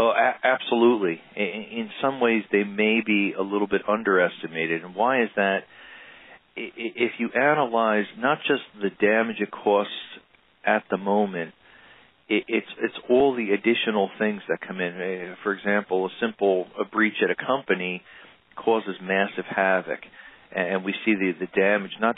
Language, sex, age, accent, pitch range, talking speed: English, male, 40-59, American, 95-105 Hz, 150 wpm